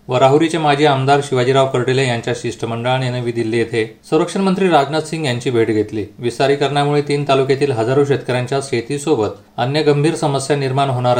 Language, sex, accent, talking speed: Marathi, male, native, 150 wpm